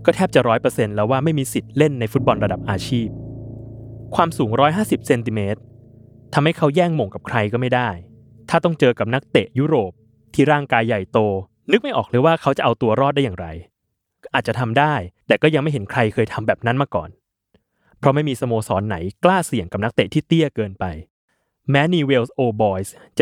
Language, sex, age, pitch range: Thai, male, 20-39, 105-145 Hz